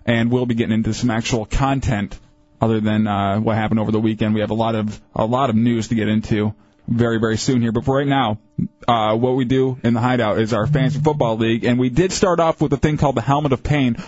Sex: male